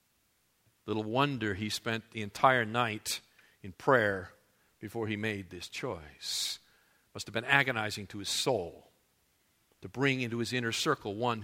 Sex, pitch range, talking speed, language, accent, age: male, 115-150 Hz, 150 wpm, English, American, 50-69